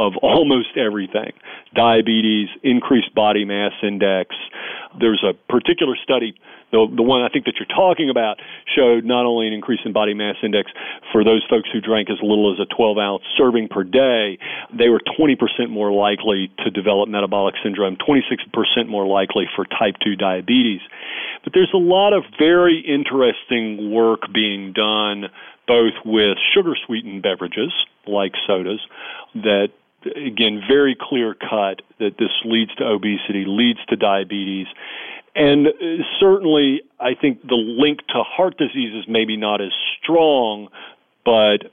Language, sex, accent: English, male, American